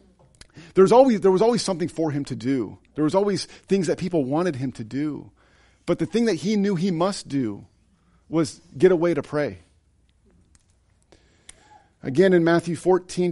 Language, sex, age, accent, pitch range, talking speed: English, male, 40-59, American, 120-185 Hz, 175 wpm